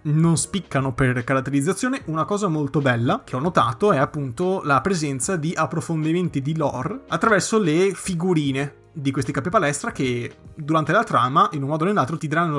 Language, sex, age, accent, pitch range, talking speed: Italian, male, 30-49, native, 140-170 Hz, 175 wpm